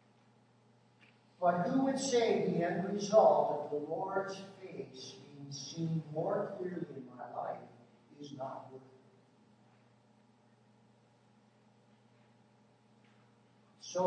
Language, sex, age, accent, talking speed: English, male, 60-79, American, 100 wpm